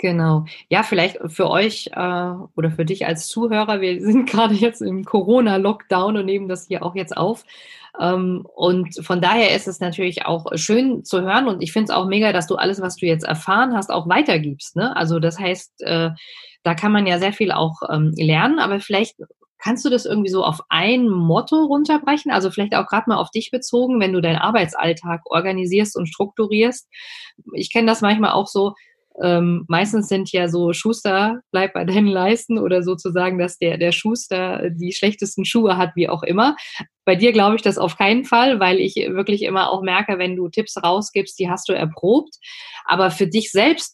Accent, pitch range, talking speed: German, 175-220 Hz, 200 wpm